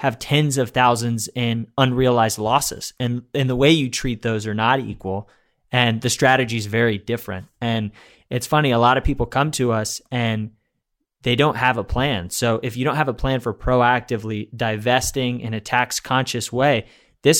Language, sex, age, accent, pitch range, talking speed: English, male, 20-39, American, 110-130 Hz, 190 wpm